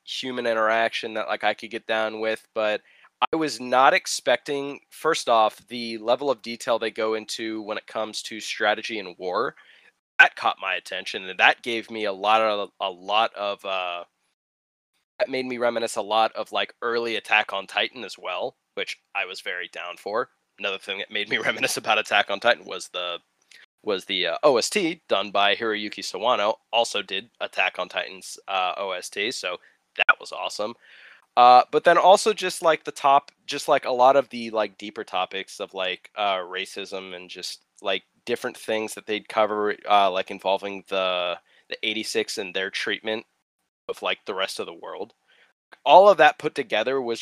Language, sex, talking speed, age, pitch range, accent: English, male, 185 wpm, 20-39, 105-130 Hz, American